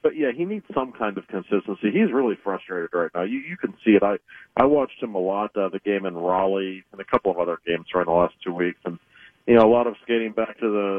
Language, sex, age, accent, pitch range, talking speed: English, male, 50-69, American, 100-125 Hz, 275 wpm